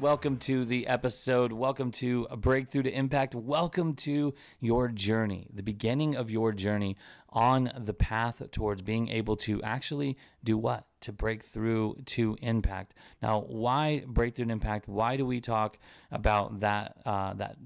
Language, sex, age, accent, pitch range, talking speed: English, male, 30-49, American, 100-120 Hz, 150 wpm